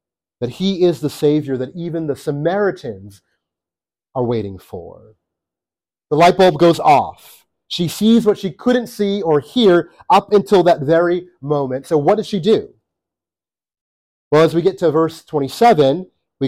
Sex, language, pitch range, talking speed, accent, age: male, English, 135-200 Hz, 155 wpm, American, 30-49